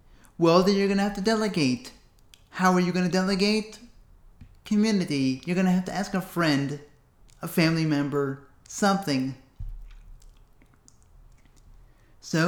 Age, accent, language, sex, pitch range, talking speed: 30-49, American, English, male, 130-185 Hz, 135 wpm